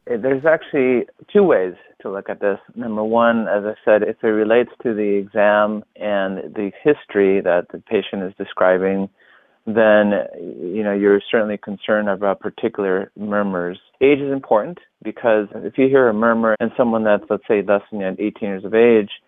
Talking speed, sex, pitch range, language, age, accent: 175 wpm, male, 95-110 Hz, English, 30-49, American